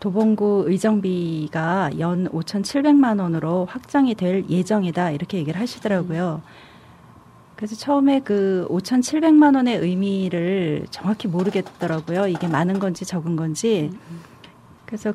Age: 40-59